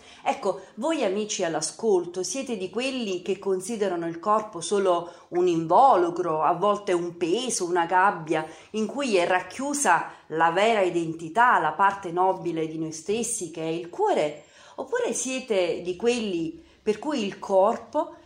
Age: 40-59